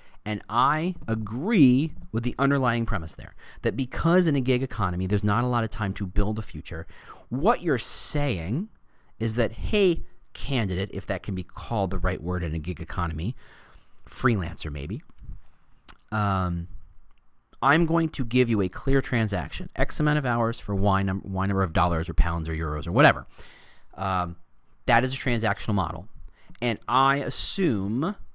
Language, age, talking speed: English, 30-49, 165 wpm